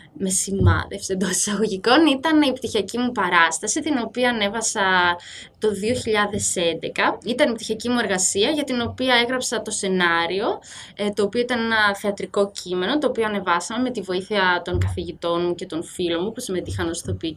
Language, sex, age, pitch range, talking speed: Greek, female, 20-39, 180-230 Hz, 165 wpm